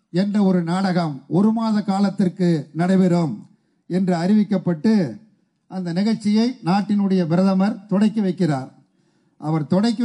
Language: Tamil